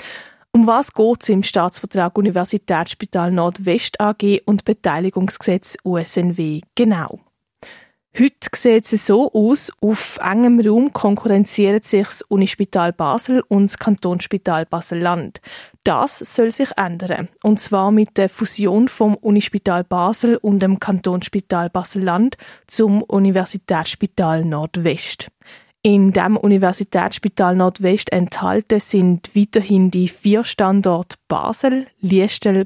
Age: 20-39